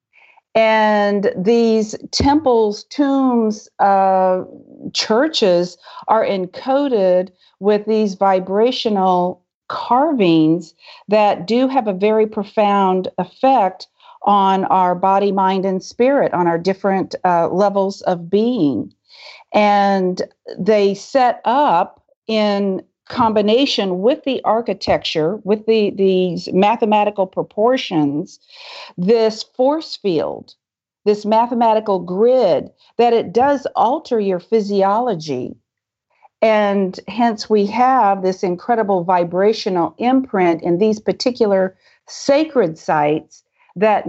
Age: 50-69